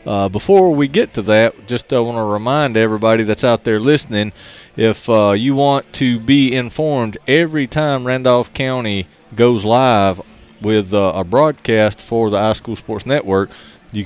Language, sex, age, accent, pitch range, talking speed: English, male, 30-49, American, 105-130 Hz, 165 wpm